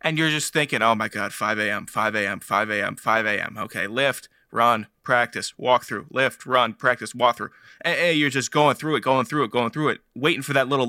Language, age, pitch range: English, 20-39, 115-145 Hz